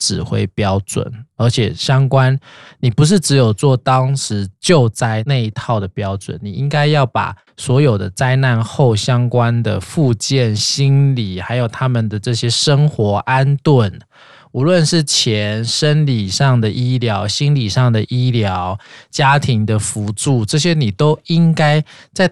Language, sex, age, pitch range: Chinese, male, 20-39, 115-150 Hz